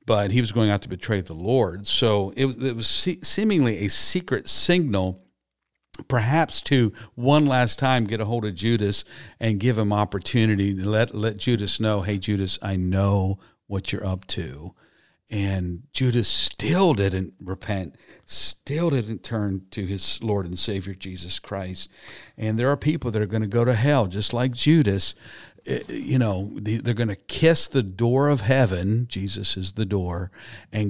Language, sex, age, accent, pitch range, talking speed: English, male, 50-69, American, 100-130 Hz, 170 wpm